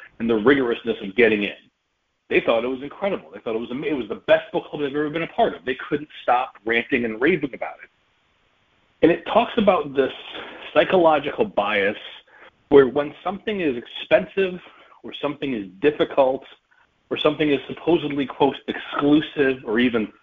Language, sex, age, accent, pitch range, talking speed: English, male, 40-59, American, 130-165 Hz, 180 wpm